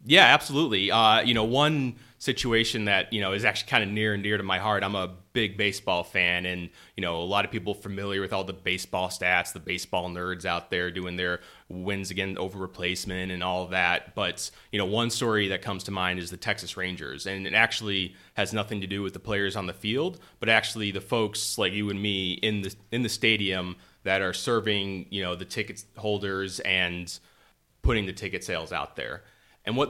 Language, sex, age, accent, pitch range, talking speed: English, male, 30-49, American, 95-110 Hz, 220 wpm